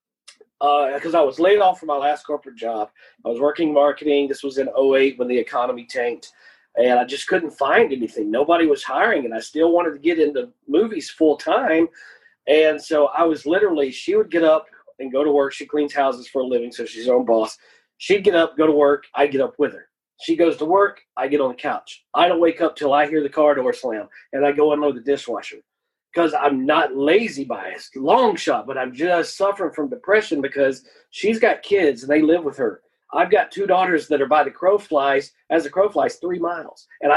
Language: English